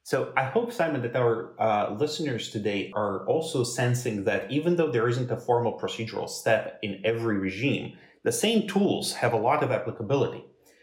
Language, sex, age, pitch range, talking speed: English, male, 30-49, 105-135 Hz, 175 wpm